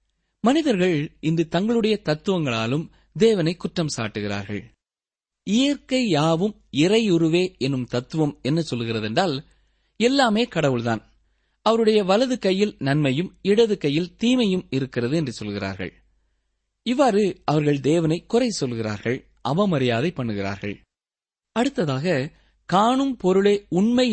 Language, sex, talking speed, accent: Tamil, male, 95 wpm, native